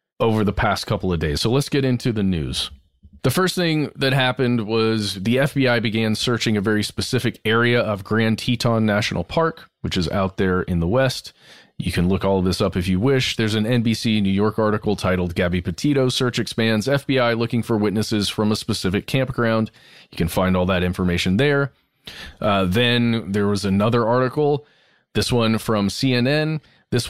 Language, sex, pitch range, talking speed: English, male, 105-135 Hz, 190 wpm